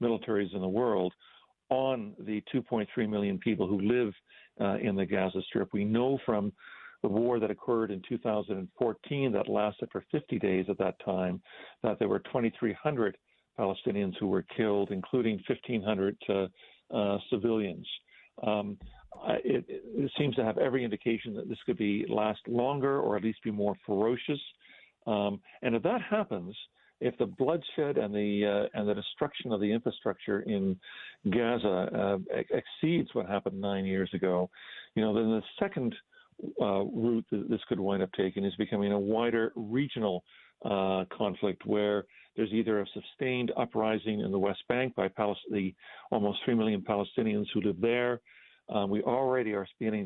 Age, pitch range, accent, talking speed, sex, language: 50-69, 100-120 Hz, American, 165 wpm, male, English